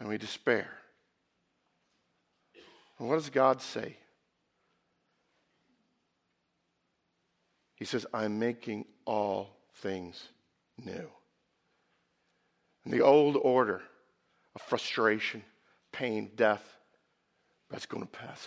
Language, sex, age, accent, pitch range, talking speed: English, male, 50-69, American, 120-170 Hz, 90 wpm